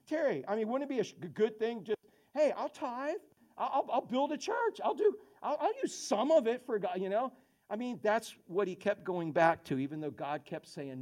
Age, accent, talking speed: 50-69, American, 245 wpm